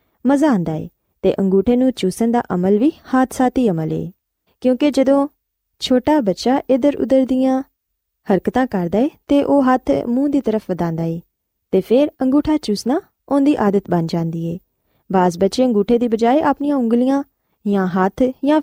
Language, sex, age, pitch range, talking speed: Punjabi, female, 20-39, 190-265 Hz, 160 wpm